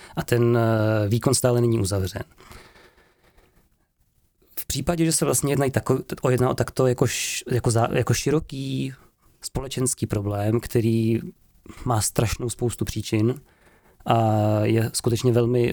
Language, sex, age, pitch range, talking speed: Czech, male, 20-39, 115-130 Hz, 105 wpm